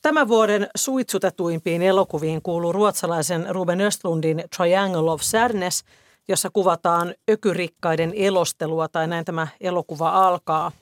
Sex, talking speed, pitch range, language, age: female, 110 wpm, 170-195 Hz, Finnish, 40-59